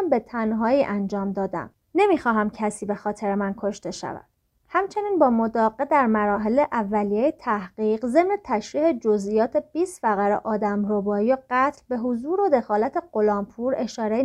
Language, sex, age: Persian, female, 30-49